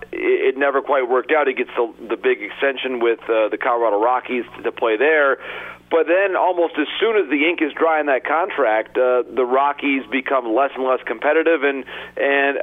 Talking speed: 205 wpm